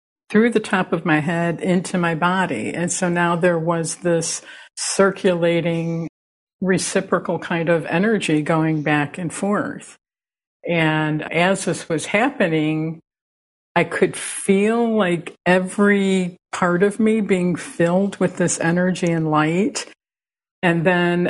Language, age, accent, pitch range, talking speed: English, 50-69, American, 165-200 Hz, 130 wpm